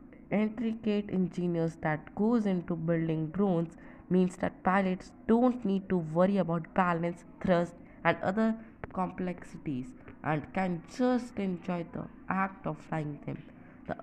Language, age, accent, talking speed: English, 20-39, Indian, 130 wpm